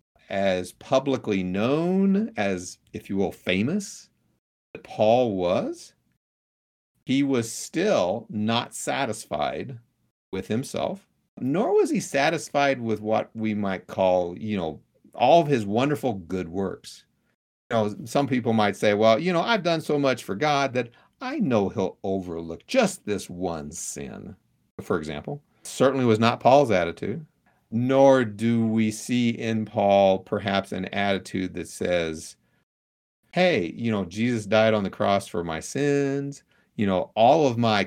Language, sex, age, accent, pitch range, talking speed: English, male, 50-69, American, 95-130 Hz, 145 wpm